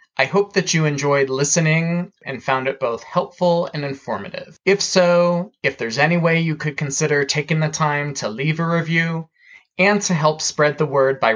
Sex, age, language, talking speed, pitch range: male, 20-39, English, 190 wpm, 145-190 Hz